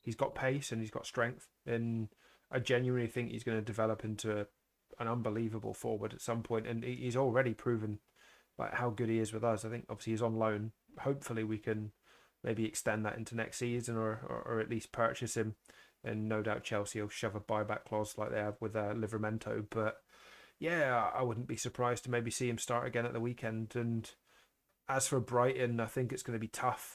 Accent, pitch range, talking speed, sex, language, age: British, 110-125 Hz, 215 wpm, male, English, 20-39